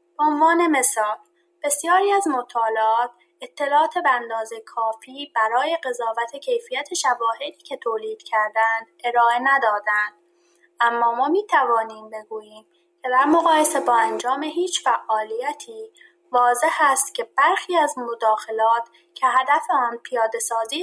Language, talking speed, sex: Persian, 115 wpm, female